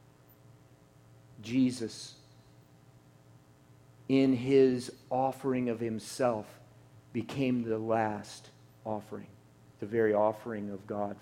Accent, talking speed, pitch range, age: American, 80 wpm, 125-165 Hz, 50-69